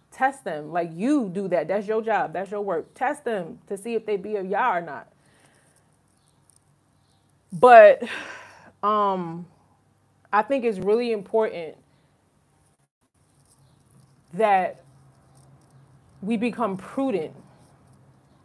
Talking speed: 110 wpm